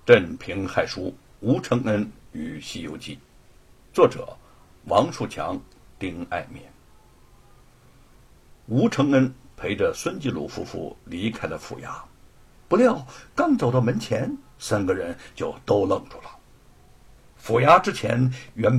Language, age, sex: Chinese, 60-79, male